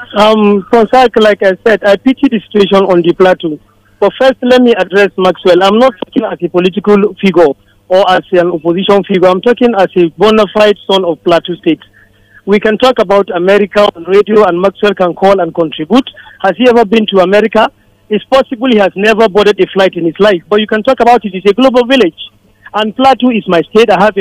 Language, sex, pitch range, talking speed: English, male, 180-220 Hz, 215 wpm